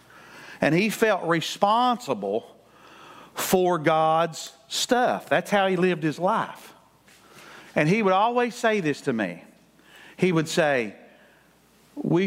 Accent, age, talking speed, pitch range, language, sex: American, 50-69, 120 wpm, 130-175 Hz, English, male